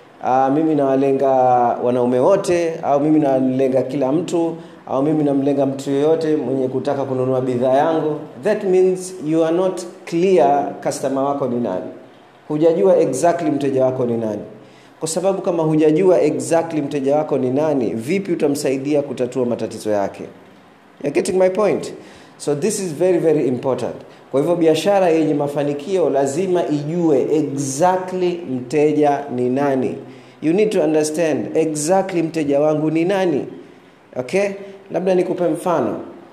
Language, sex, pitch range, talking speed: Swahili, male, 130-170 Hz, 145 wpm